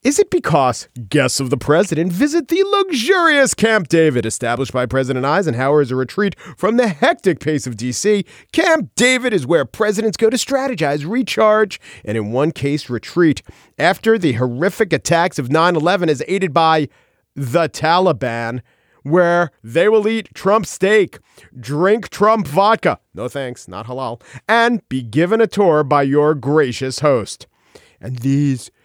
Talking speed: 155 wpm